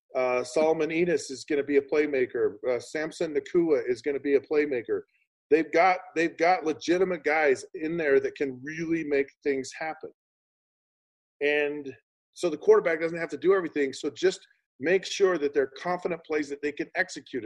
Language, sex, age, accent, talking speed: English, male, 40-59, American, 180 wpm